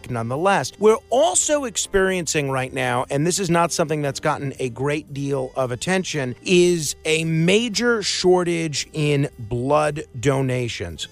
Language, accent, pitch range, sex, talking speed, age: English, American, 135-170 Hz, male, 135 wpm, 40-59